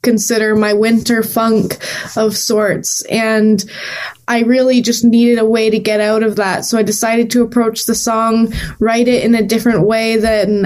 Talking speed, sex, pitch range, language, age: 180 wpm, female, 205-235 Hz, English, 20-39